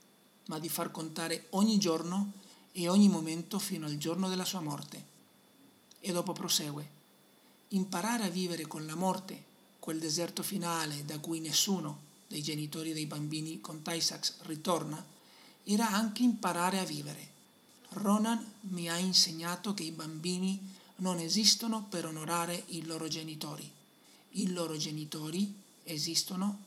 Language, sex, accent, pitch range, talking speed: Italian, male, native, 165-205 Hz, 135 wpm